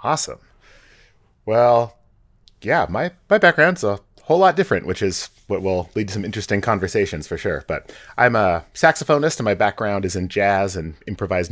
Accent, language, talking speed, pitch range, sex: American, English, 170 wpm, 95-115 Hz, male